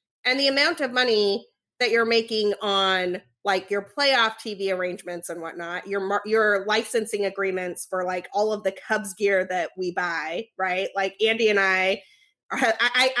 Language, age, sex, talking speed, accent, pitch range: English, 30-49, female, 175 wpm, American, 185-235 Hz